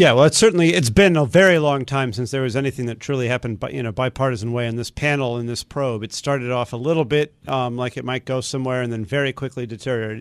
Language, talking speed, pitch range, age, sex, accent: English, 265 wpm, 110-135 Hz, 50-69, male, American